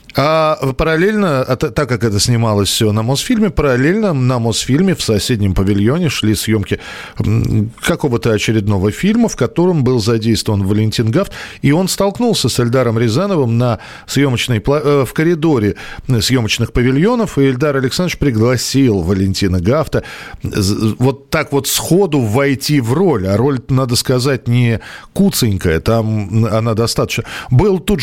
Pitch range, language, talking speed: 110-150 Hz, Russian, 130 wpm